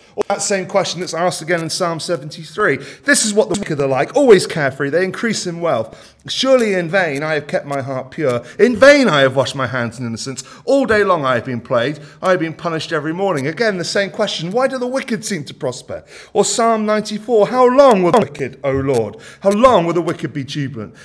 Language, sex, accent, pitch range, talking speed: English, male, British, 135-215 Hz, 230 wpm